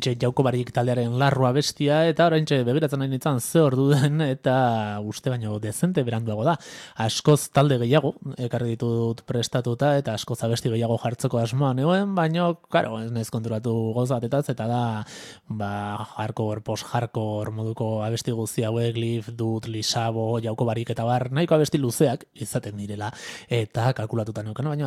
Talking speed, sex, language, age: 140 wpm, male, English, 20-39